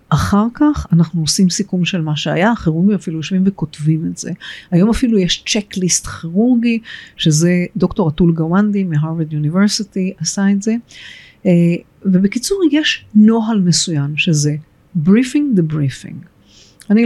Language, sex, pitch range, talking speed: Hebrew, female, 160-210 Hz, 130 wpm